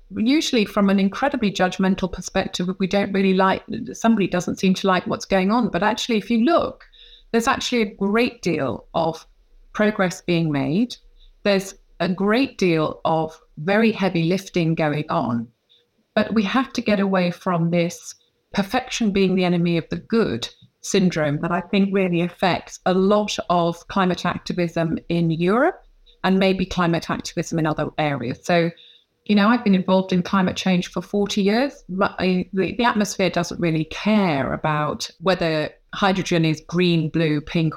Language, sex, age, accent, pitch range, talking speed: English, female, 30-49, British, 170-210 Hz, 165 wpm